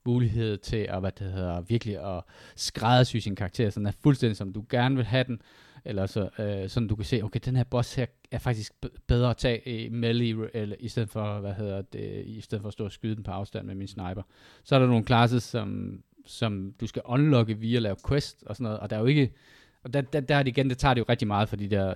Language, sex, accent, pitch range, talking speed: Danish, male, native, 95-120 Hz, 255 wpm